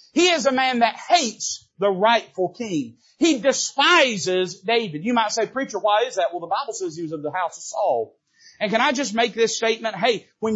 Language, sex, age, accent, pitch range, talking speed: English, male, 40-59, American, 195-265 Hz, 220 wpm